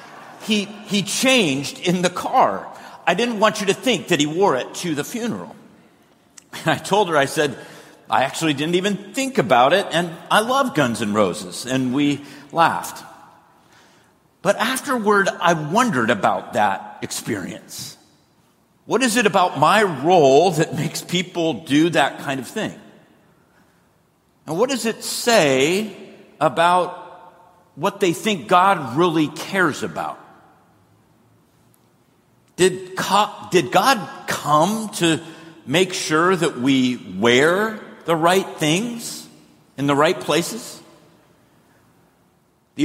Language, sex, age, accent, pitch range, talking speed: English, male, 50-69, American, 155-205 Hz, 130 wpm